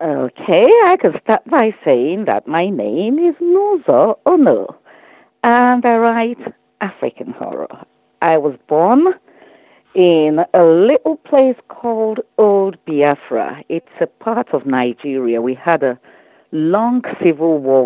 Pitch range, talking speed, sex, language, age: 145-235 Hz, 130 wpm, female, English, 50-69